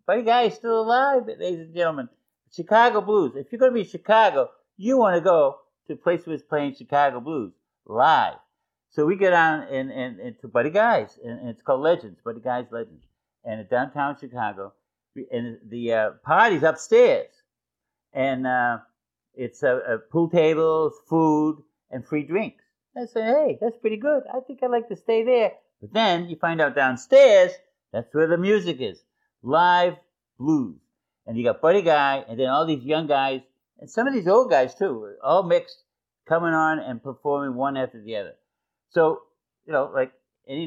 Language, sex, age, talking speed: English, male, 50-69, 185 wpm